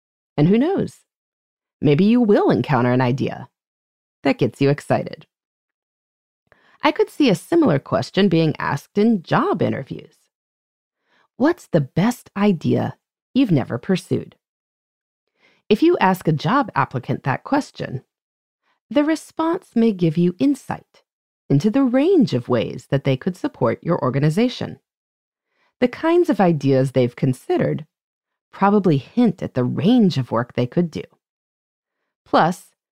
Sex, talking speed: female, 135 wpm